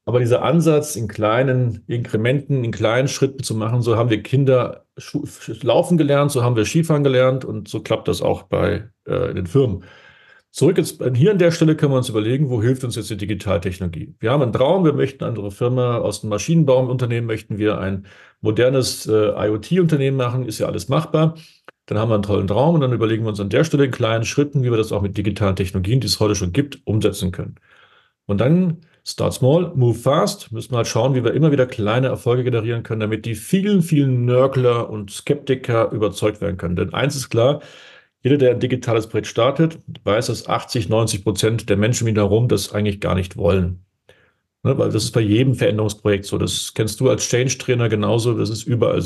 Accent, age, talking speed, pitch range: German, 40-59, 205 wpm, 105-135 Hz